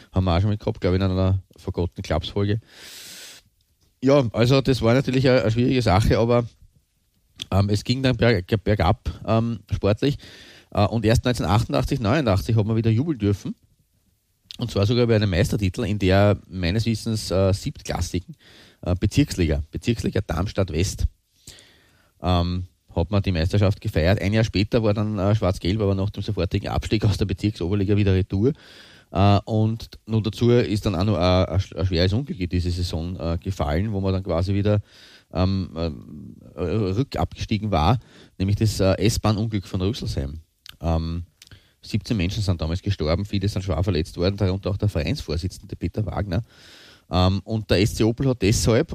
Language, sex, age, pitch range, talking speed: German, male, 30-49, 90-110 Hz, 160 wpm